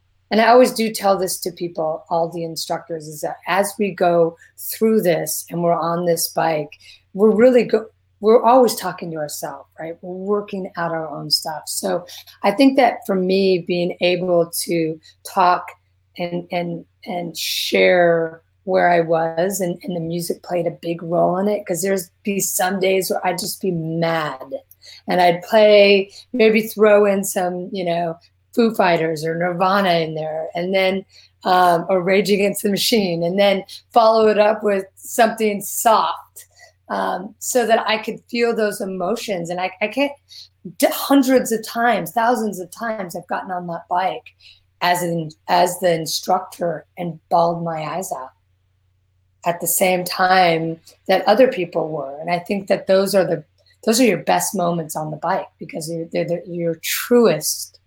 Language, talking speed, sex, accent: English, 170 wpm, female, American